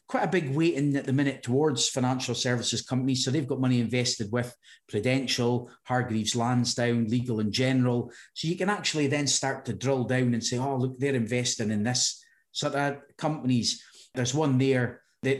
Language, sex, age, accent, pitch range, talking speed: English, male, 30-49, British, 120-145 Hz, 185 wpm